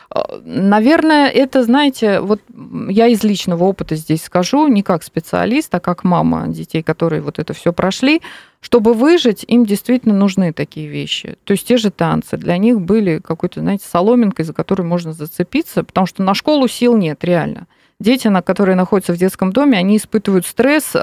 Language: Russian